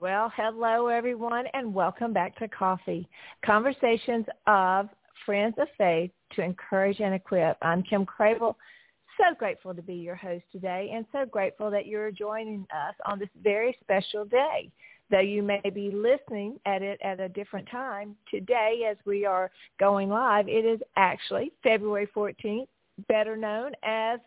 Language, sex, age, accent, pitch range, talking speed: English, female, 50-69, American, 185-225 Hz, 160 wpm